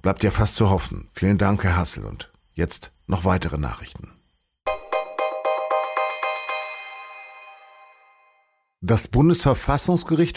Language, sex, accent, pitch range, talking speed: German, male, German, 90-115 Hz, 95 wpm